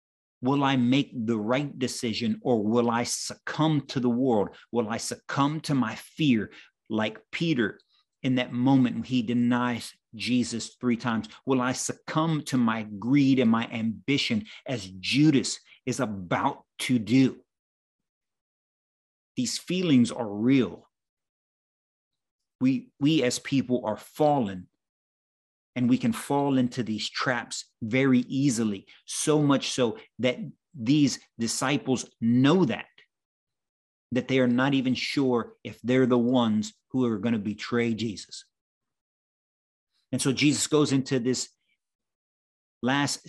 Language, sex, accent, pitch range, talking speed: English, male, American, 120-135 Hz, 130 wpm